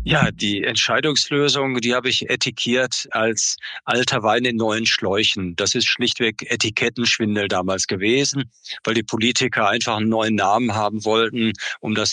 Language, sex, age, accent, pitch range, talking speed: German, male, 50-69, German, 105-125 Hz, 150 wpm